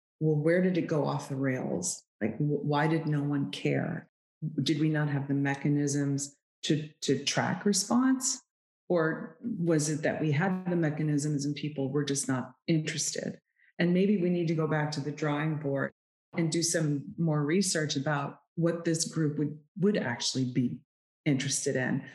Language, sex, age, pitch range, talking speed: English, female, 30-49, 145-180 Hz, 175 wpm